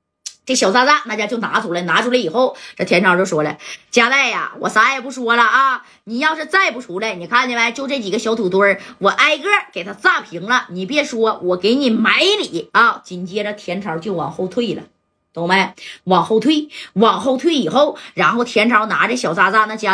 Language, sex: Chinese, female